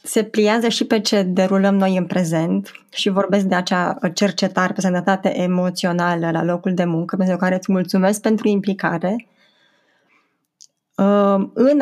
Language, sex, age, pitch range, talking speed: Romanian, female, 20-39, 185-220 Hz, 140 wpm